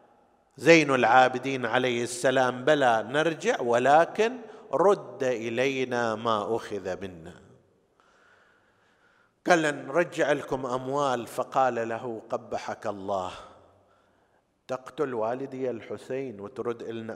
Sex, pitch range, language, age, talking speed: male, 115-170 Hz, Arabic, 50-69, 85 wpm